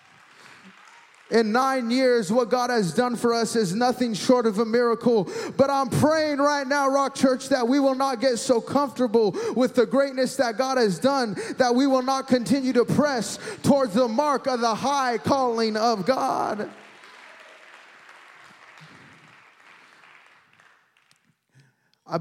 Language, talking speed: English, 145 wpm